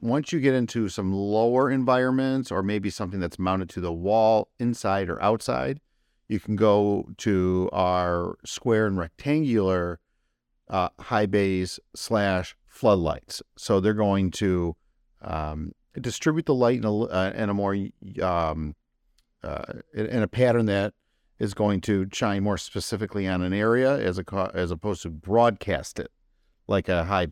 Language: English